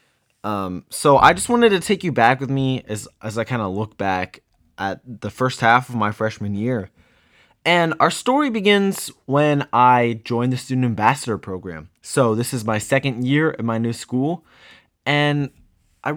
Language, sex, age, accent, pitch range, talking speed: English, male, 20-39, American, 105-135 Hz, 180 wpm